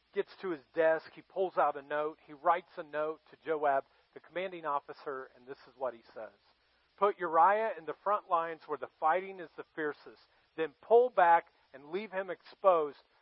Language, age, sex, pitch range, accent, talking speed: English, 40-59, male, 145-190 Hz, American, 195 wpm